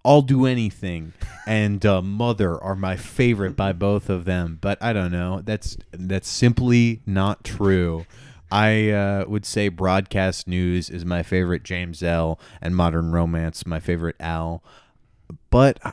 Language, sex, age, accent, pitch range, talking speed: English, male, 20-39, American, 85-100 Hz, 150 wpm